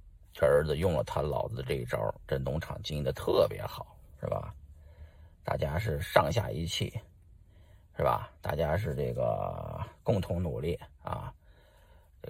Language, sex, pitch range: Chinese, male, 80-110 Hz